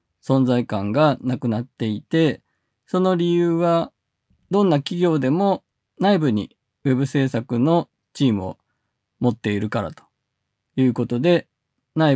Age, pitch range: 20-39, 115-145 Hz